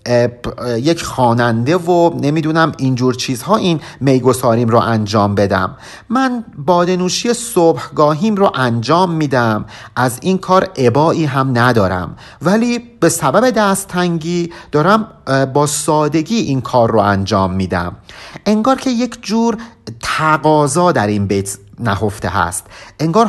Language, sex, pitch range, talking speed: Persian, male, 115-170 Hz, 120 wpm